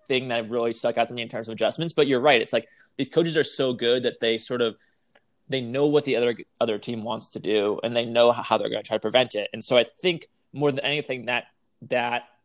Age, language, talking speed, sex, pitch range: 20-39, English, 270 wpm, male, 115-135 Hz